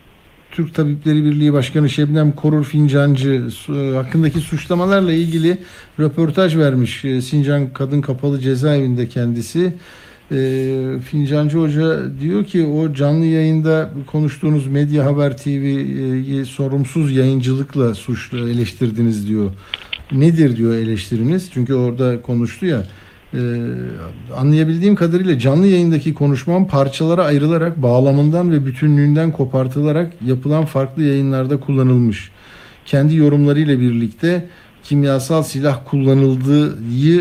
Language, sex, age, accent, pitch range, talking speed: Turkish, male, 60-79, native, 125-155 Hz, 100 wpm